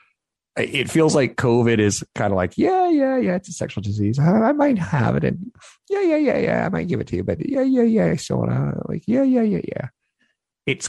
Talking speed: 230 wpm